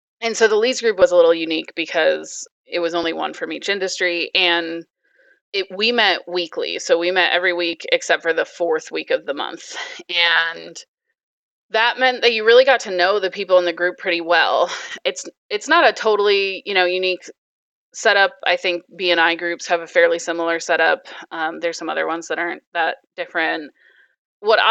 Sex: female